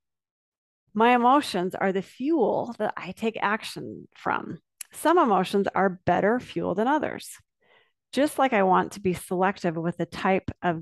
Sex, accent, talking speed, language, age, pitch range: female, American, 155 wpm, English, 40-59, 180-250 Hz